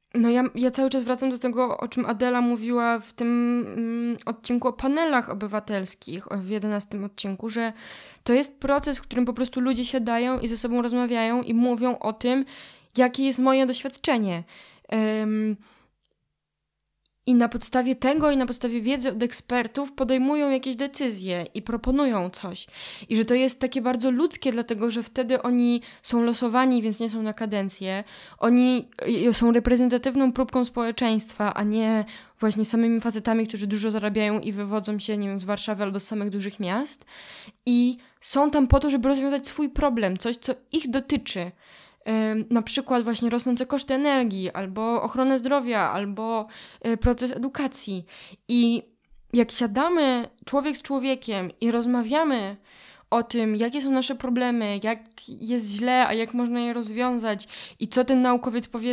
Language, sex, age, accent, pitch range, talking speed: Polish, female, 20-39, native, 220-255 Hz, 155 wpm